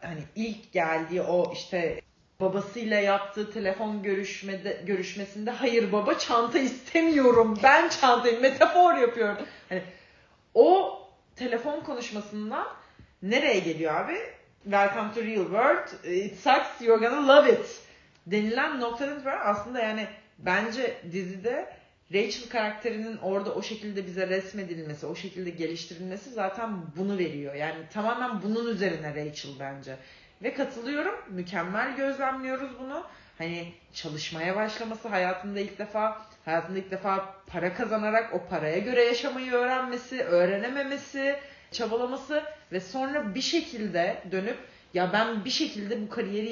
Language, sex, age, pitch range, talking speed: Turkish, female, 40-59, 185-250 Hz, 120 wpm